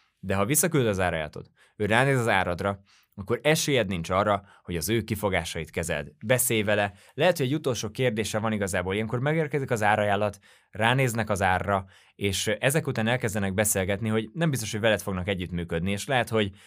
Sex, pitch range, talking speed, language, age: male, 95-115 Hz, 175 wpm, Hungarian, 20-39